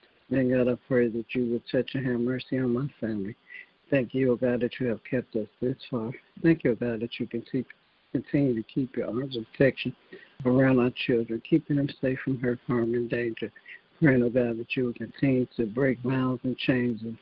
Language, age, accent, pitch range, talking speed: English, 60-79, American, 120-130 Hz, 235 wpm